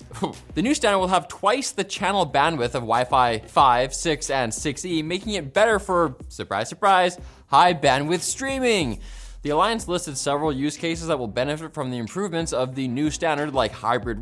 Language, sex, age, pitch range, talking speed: English, male, 20-39, 125-185 Hz, 175 wpm